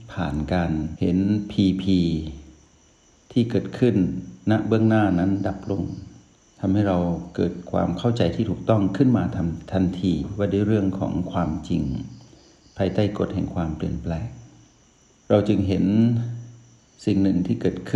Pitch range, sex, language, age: 85-105 Hz, male, Thai, 60-79